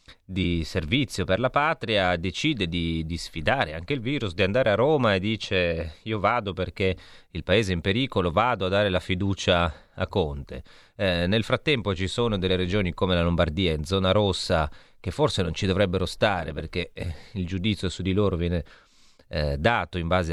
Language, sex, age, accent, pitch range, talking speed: Italian, male, 30-49, native, 90-115 Hz, 190 wpm